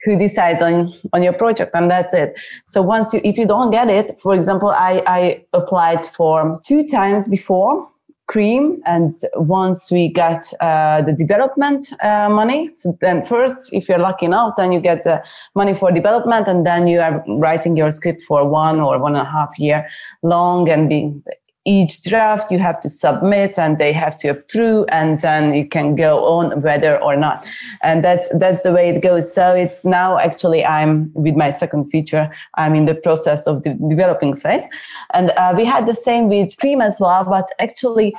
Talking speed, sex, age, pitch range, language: 195 wpm, female, 30-49, 160-200 Hz, English